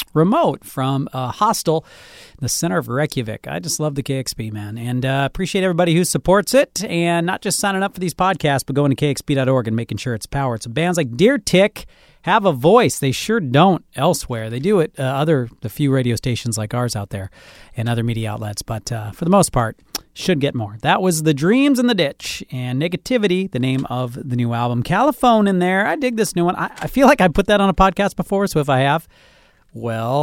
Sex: male